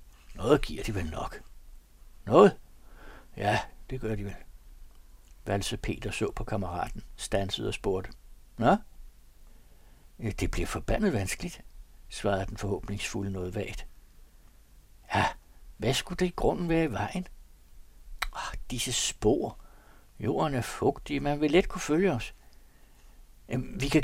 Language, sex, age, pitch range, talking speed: Danish, male, 60-79, 95-140 Hz, 135 wpm